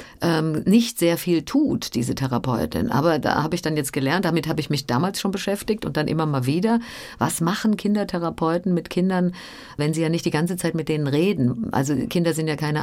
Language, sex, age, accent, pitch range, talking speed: German, female, 50-69, German, 150-185 Hz, 210 wpm